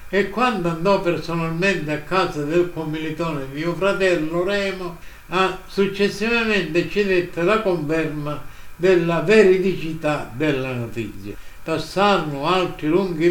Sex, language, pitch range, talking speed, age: male, Italian, 155-195 Hz, 110 wpm, 60-79